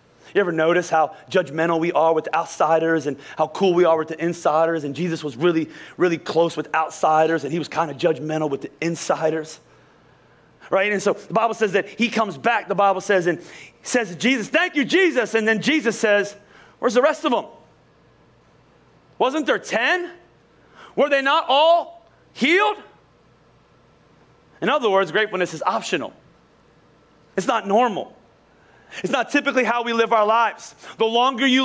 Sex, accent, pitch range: male, American, 185-265 Hz